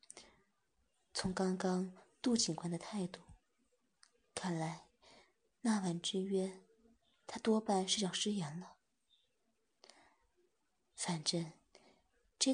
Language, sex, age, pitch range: Chinese, female, 20-39, 175-220 Hz